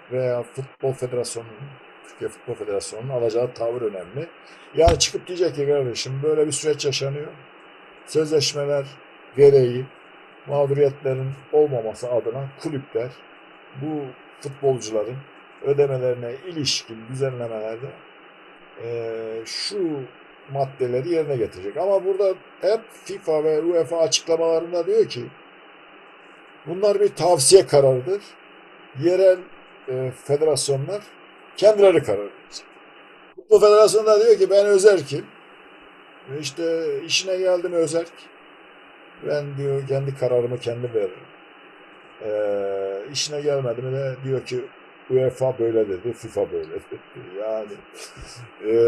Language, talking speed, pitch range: Turkish, 100 wpm, 130-215 Hz